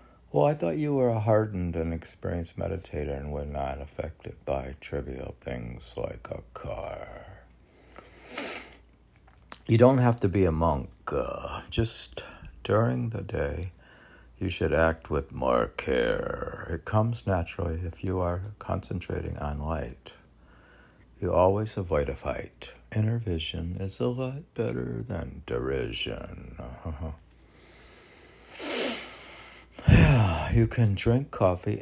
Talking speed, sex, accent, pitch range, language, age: 120 wpm, male, American, 80-110 Hz, English, 60-79